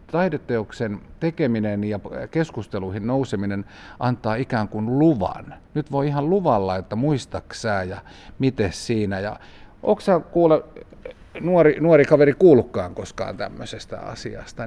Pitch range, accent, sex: 95-125 Hz, native, male